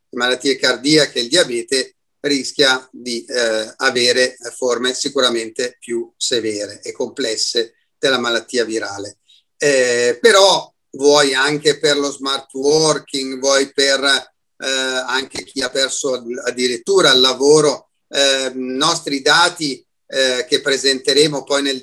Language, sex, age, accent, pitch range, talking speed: Italian, male, 40-59, native, 130-160 Hz, 125 wpm